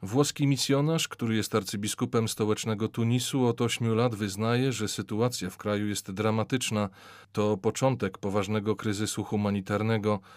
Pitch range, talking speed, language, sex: 105-120 Hz, 125 wpm, Polish, male